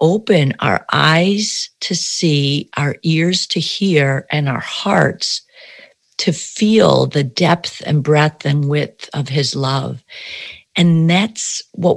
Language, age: English, 50-69